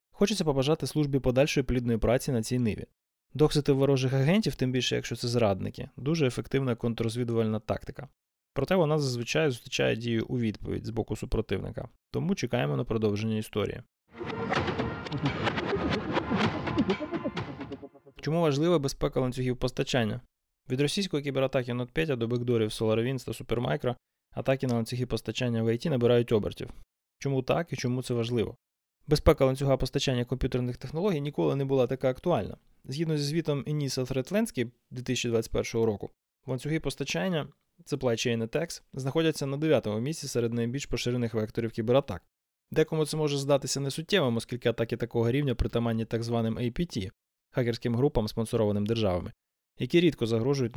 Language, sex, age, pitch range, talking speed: Ukrainian, male, 20-39, 115-140 Hz, 135 wpm